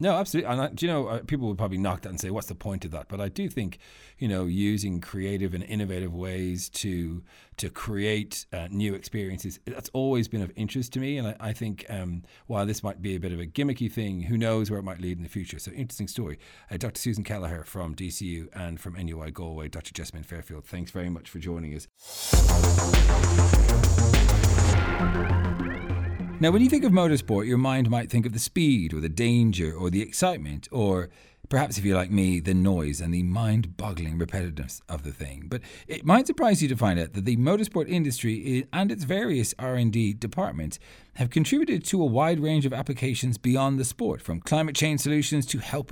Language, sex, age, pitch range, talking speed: English, male, 40-59, 90-130 Hz, 205 wpm